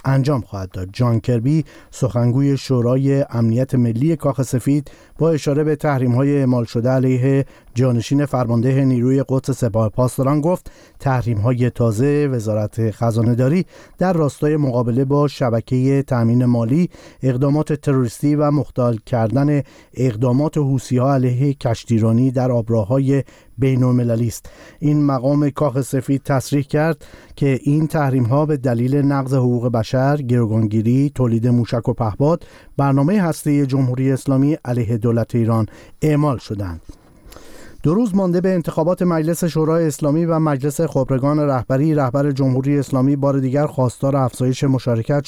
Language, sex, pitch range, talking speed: Persian, male, 125-145 Hz, 130 wpm